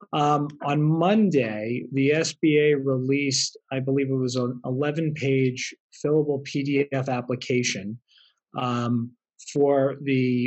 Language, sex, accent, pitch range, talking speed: English, male, American, 125-150 Hz, 105 wpm